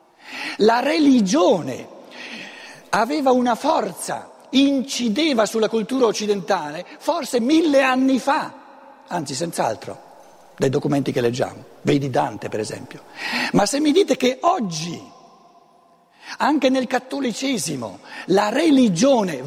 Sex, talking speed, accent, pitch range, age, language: male, 105 wpm, native, 180-260 Hz, 60-79, Italian